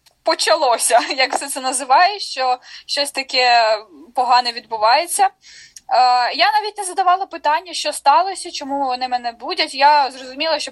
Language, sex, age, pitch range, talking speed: Ukrainian, female, 10-29, 240-315 Hz, 140 wpm